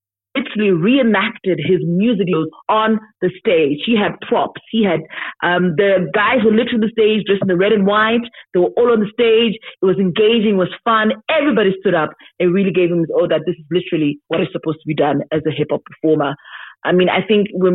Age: 30-49